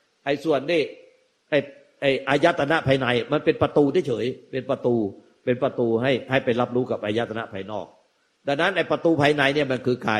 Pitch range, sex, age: 130-180 Hz, male, 60-79